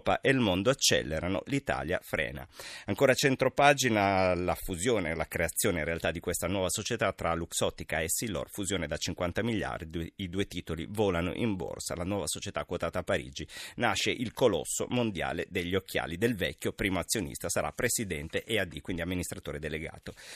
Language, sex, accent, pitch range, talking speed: Italian, male, native, 90-125 Hz, 160 wpm